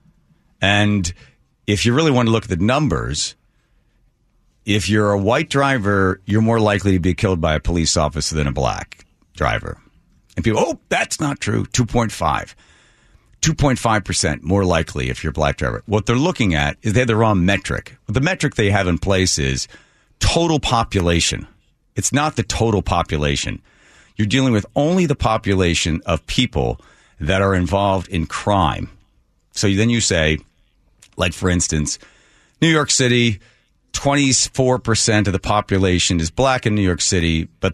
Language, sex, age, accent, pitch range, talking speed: English, male, 50-69, American, 80-115 Hz, 165 wpm